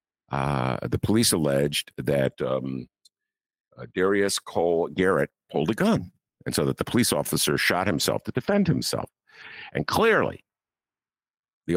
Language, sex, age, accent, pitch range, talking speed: English, male, 50-69, American, 75-110 Hz, 140 wpm